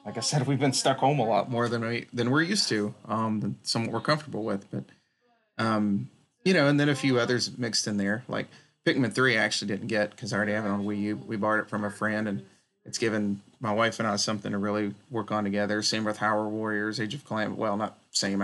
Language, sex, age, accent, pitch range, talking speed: English, male, 30-49, American, 105-130 Hz, 250 wpm